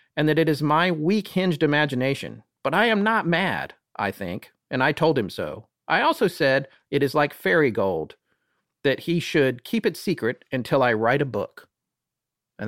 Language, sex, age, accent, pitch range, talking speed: English, male, 40-59, American, 135-190 Hz, 190 wpm